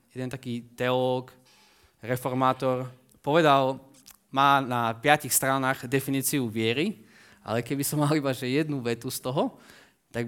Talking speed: 130 wpm